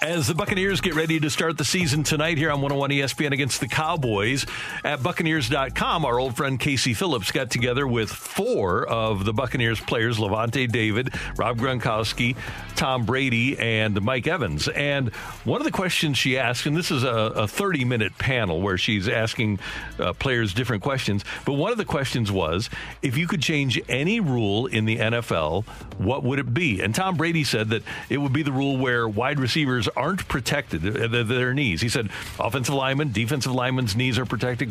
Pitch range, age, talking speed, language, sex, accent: 115-145 Hz, 50-69, 185 wpm, English, male, American